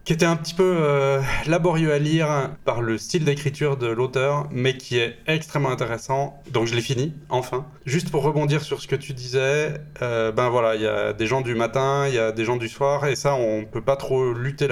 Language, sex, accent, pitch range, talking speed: French, male, French, 120-145 Hz, 240 wpm